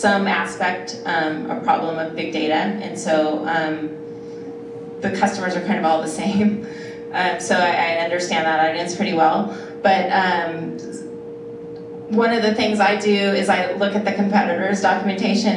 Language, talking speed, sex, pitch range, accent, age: English, 165 wpm, female, 165-205 Hz, American, 30-49